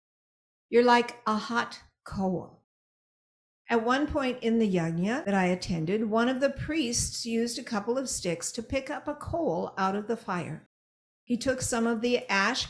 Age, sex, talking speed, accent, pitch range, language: 50-69, female, 180 wpm, American, 185-240 Hz, English